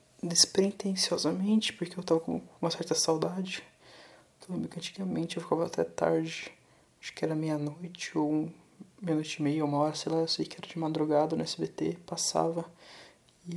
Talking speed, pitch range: 170 wpm, 155-175 Hz